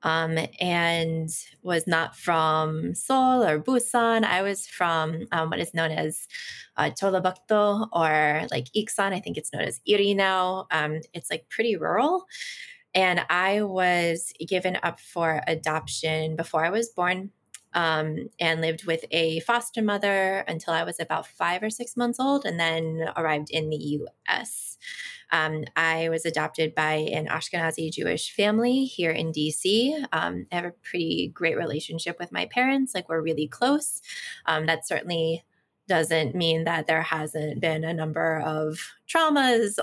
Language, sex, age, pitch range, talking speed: English, female, 20-39, 160-210 Hz, 155 wpm